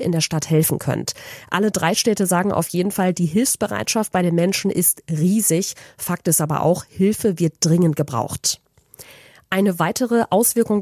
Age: 30-49